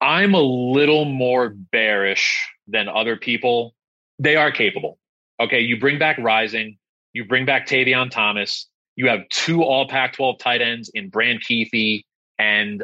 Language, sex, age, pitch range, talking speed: English, male, 30-49, 115-145 Hz, 150 wpm